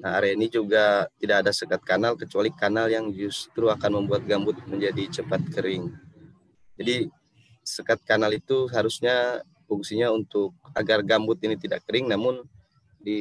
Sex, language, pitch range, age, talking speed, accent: male, Indonesian, 100-125 Hz, 20-39, 145 wpm, native